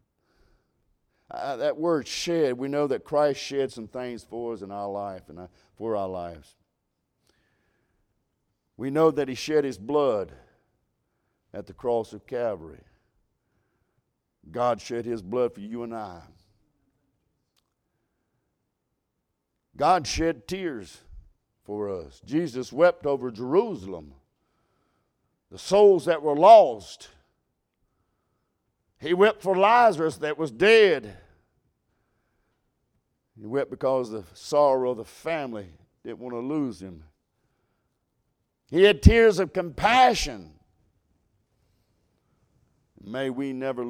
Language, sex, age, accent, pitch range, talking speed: English, male, 50-69, American, 105-155 Hz, 115 wpm